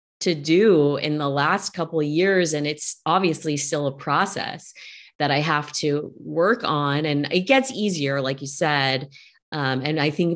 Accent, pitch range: American, 145-185 Hz